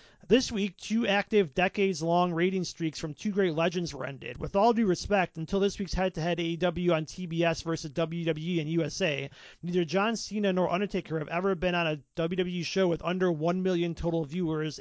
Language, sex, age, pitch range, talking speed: English, male, 40-59, 160-195 Hz, 185 wpm